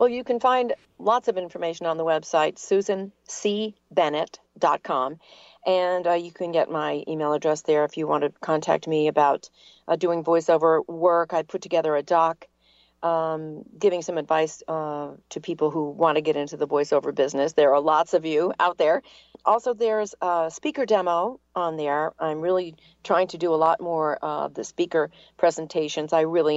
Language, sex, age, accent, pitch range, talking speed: English, female, 40-59, American, 150-175 Hz, 180 wpm